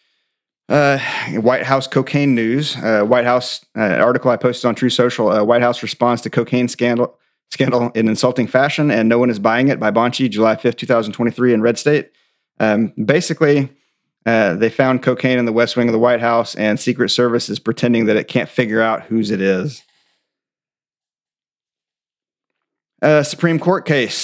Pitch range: 115-130 Hz